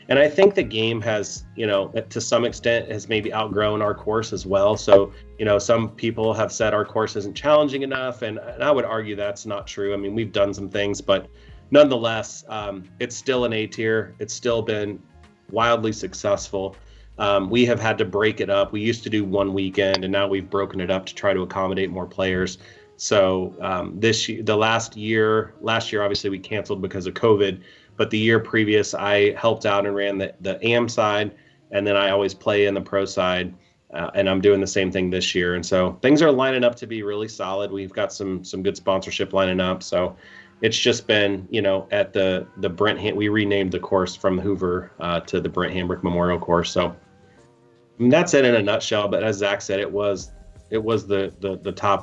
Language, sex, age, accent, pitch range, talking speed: English, male, 30-49, American, 95-110 Hz, 220 wpm